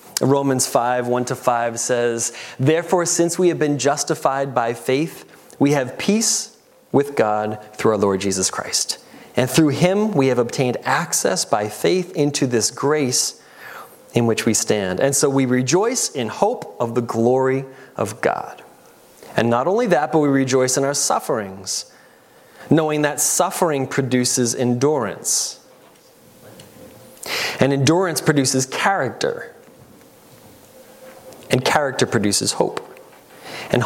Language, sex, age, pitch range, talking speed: English, male, 30-49, 115-145 Hz, 130 wpm